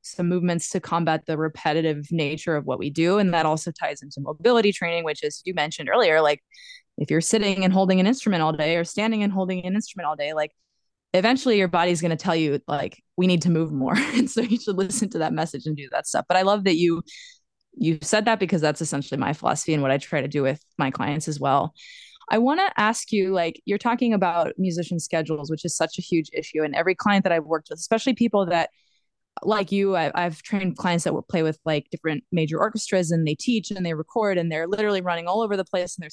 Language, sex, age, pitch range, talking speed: English, female, 20-39, 160-205 Hz, 245 wpm